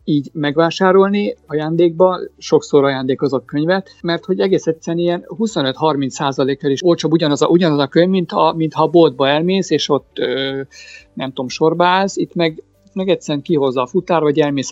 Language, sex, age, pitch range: Hungarian, male, 50-69, 140-175 Hz